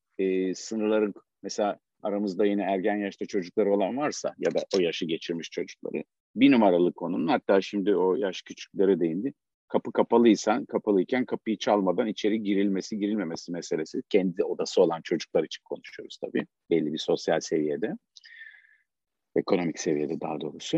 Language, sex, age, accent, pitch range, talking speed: Turkish, male, 50-69, native, 95-125 Hz, 140 wpm